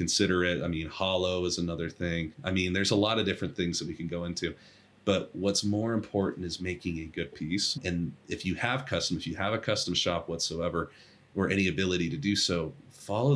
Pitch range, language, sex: 85-100 Hz, English, male